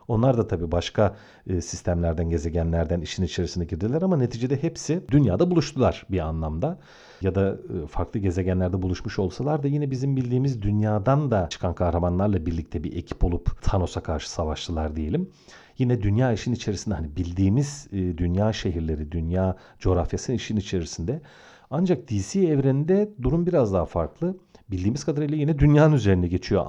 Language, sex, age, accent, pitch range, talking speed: Turkish, male, 40-59, native, 90-125 Hz, 140 wpm